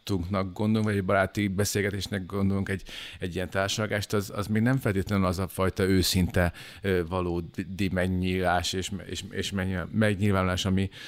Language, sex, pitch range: Hungarian, male, 90-105 Hz